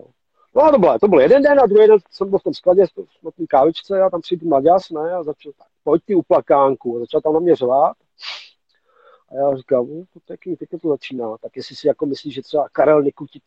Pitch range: 130-165 Hz